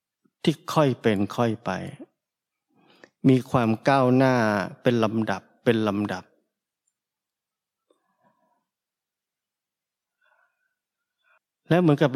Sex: male